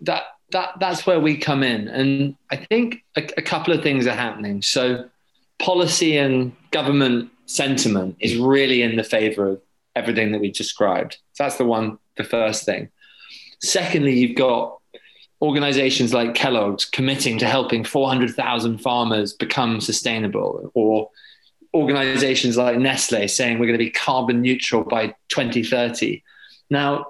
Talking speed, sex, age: 155 wpm, male, 20-39